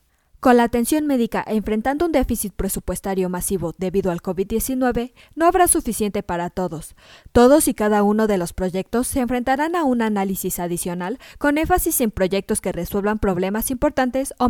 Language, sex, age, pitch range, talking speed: Spanish, female, 20-39, 185-260 Hz, 160 wpm